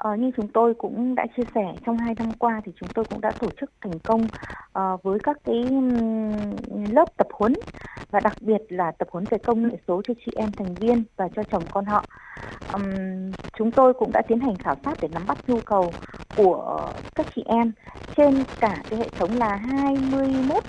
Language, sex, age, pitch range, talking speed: Vietnamese, female, 20-39, 200-255 Hz, 210 wpm